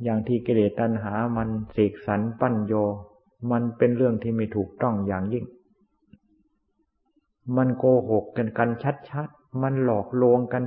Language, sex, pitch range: Thai, male, 105-130 Hz